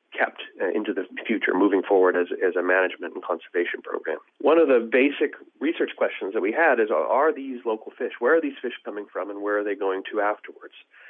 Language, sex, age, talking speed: English, male, 40-59, 215 wpm